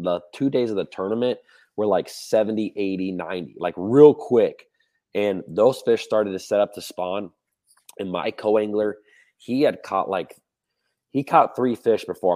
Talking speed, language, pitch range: 170 wpm, English, 85-105 Hz